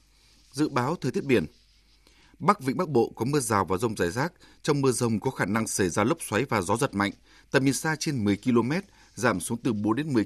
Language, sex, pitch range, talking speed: Vietnamese, male, 105-135 Hz, 245 wpm